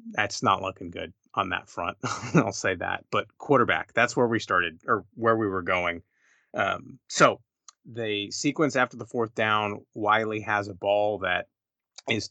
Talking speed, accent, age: 170 wpm, American, 30-49